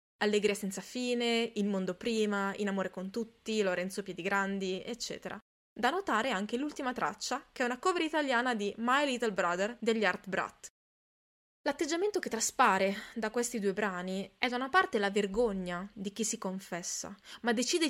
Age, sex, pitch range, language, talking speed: 20-39, female, 195-245 Hz, Italian, 165 wpm